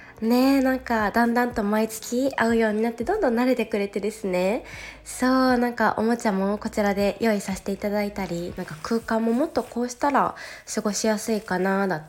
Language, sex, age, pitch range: Japanese, female, 20-39, 190-250 Hz